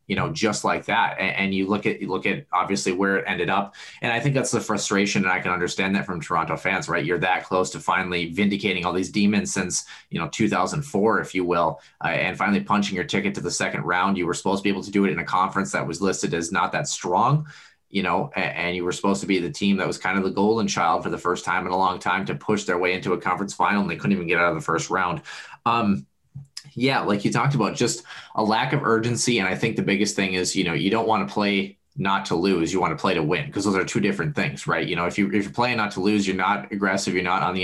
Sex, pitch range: male, 90-115 Hz